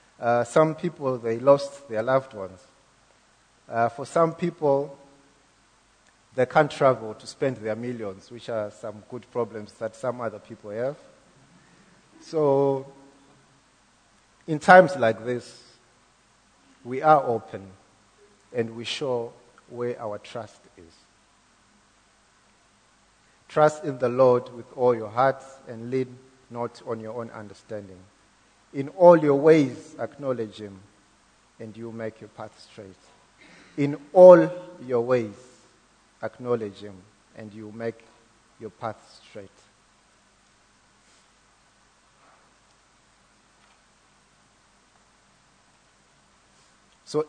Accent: South African